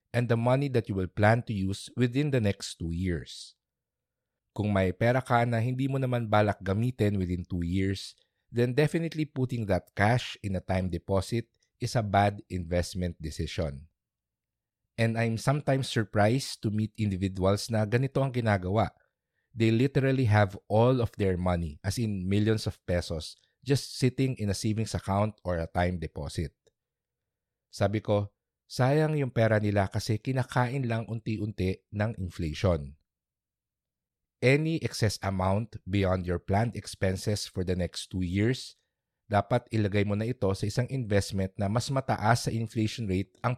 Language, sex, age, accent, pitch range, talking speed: English, male, 50-69, Filipino, 95-120 Hz, 155 wpm